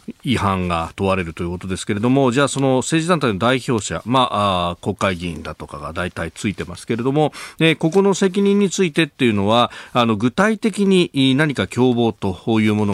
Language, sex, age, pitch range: Japanese, male, 40-59, 95-135 Hz